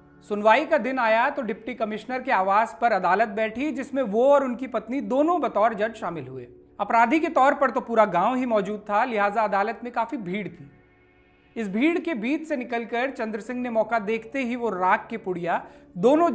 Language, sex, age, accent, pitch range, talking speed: Hindi, male, 40-59, native, 200-260 Hz, 200 wpm